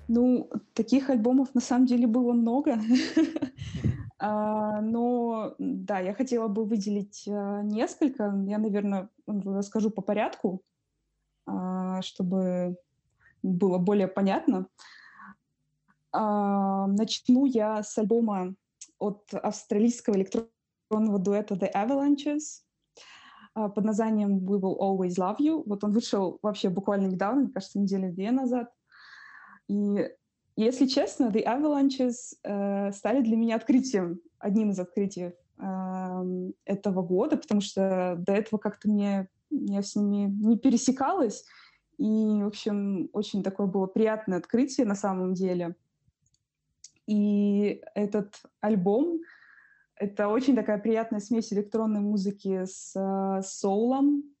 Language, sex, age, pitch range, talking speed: Russian, female, 20-39, 195-235 Hz, 110 wpm